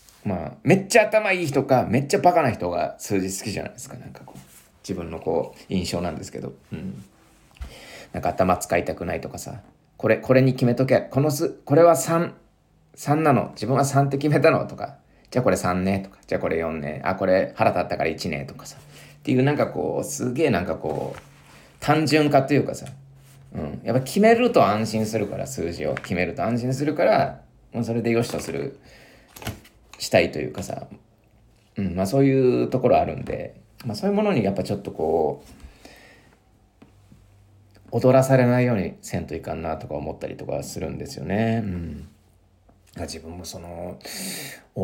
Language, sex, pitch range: Japanese, male, 95-135 Hz